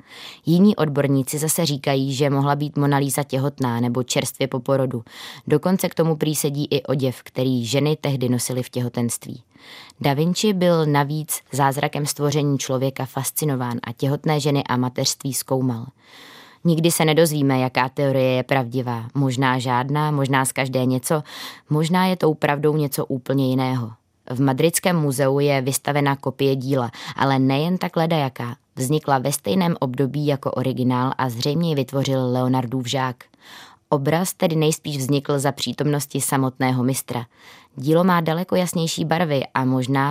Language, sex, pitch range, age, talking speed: Czech, female, 130-155 Hz, 20-39, 145 wpm